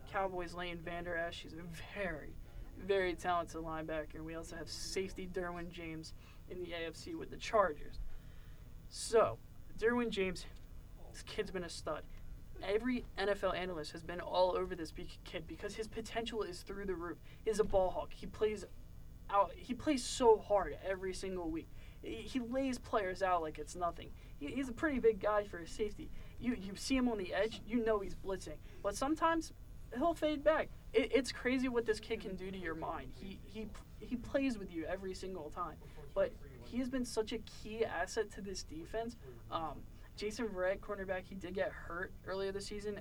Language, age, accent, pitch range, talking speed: English, 20-39, American, 165-215 Hz, 185 wpm